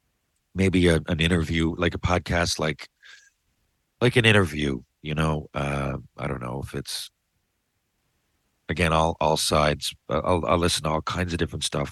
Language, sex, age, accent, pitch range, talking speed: English, male, 40-59, American, 85-105 Hz, 160 wpm